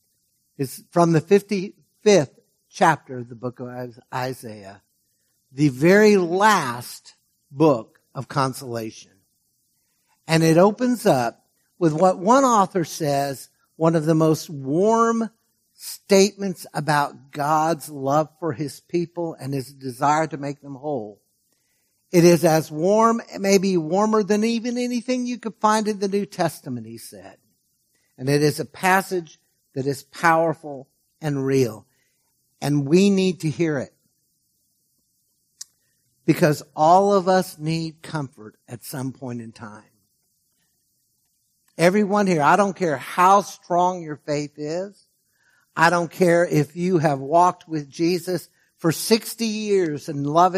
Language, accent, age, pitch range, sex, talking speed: English, American, 60-79, 140-185 Hz, male, 135 wpm